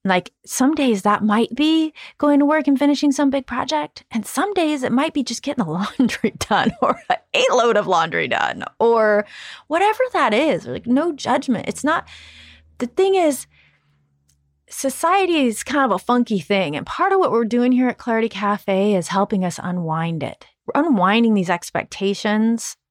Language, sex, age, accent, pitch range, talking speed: English, female, 30-49, American, 190-265 Hz, 180 wpm